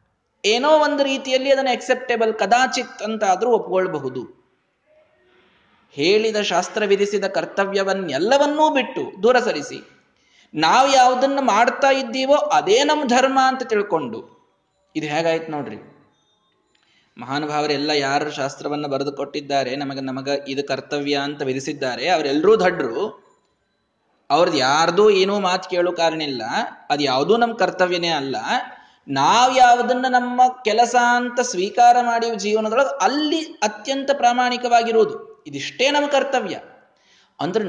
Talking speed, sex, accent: 110 wpm, male, native